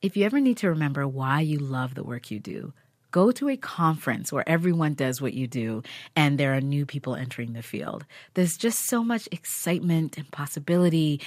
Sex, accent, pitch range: female, American, 130-165 Hz